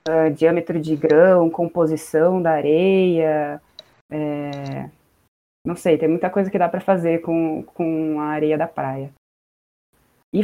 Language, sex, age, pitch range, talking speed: Portuguese, female, 20-39, 155-180 Hz, 125 wpm